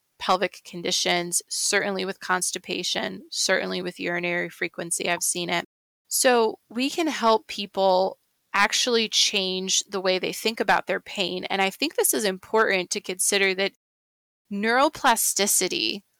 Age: 20-39